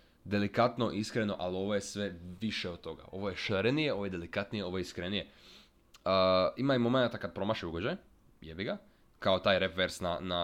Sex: male